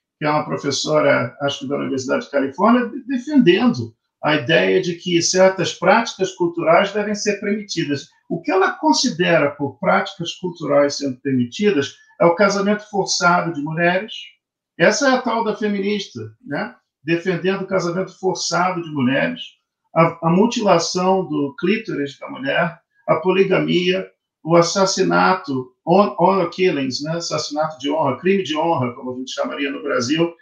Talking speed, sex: 150 wpm, male